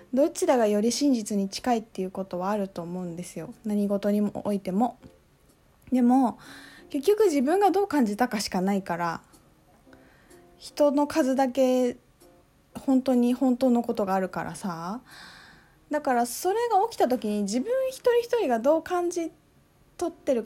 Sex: female